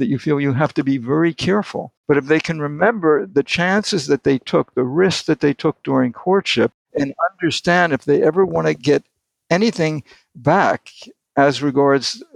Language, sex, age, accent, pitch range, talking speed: English, male, 60-79, American, 130-160 Hz, 185 wpm